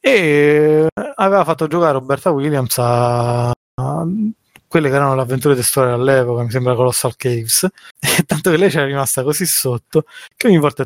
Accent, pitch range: native, 120-145 Hz